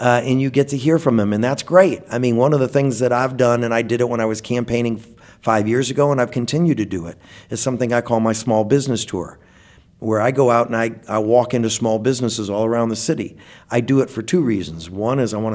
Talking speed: 270 wpm